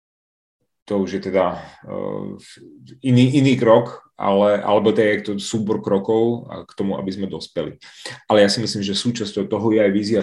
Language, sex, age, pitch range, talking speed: Czech, male, 30-49, 95-105 Hz, 175 wpm